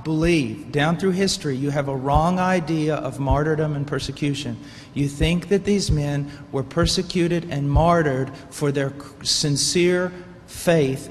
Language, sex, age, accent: English, male, 40-59, American